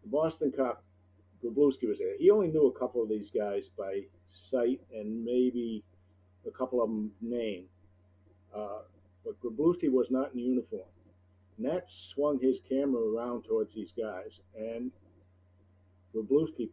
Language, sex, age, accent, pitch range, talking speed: English, male, 50-69, American, 95-130 Hz, 140 wpm